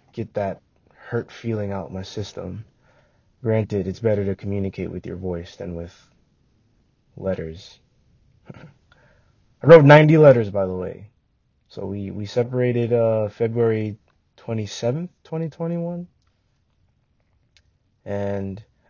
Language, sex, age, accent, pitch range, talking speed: English, male, 20-39, American, 95-115 Hz, 105 wpm